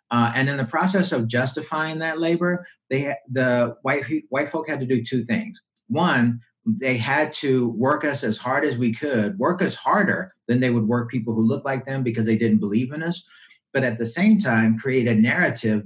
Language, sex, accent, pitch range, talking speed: English, male, American, 115-140 Hz, 210 wpm